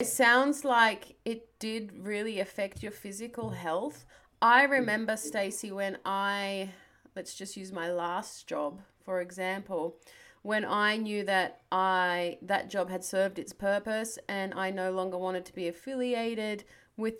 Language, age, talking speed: English, 30-49, 150 wpm